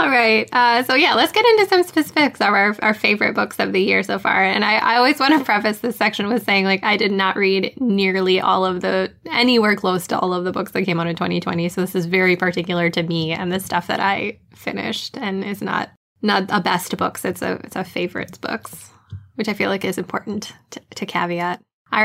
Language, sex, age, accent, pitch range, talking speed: English, female, 10-29, American, 180-215 Hz, 240 wpm